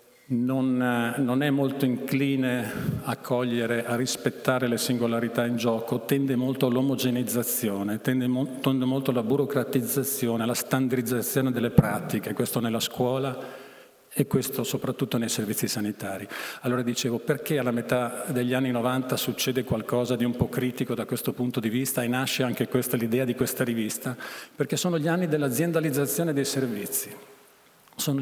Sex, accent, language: male, native, Italian